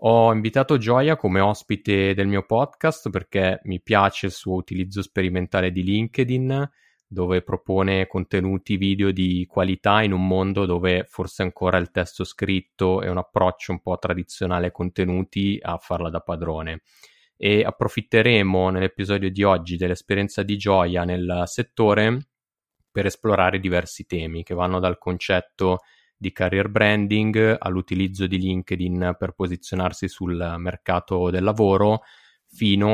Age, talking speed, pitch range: 20-39, 135 wpm, 90-105 Hz